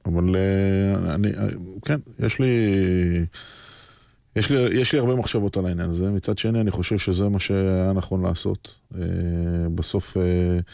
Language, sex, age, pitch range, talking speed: Hebrew, male, 20-39, 90-100 Hz, 135 wpm